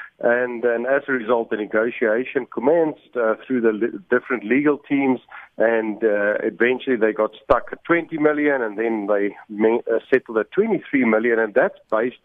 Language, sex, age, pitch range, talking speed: English, male, 50-69, 110-140 Hz, 165 wpm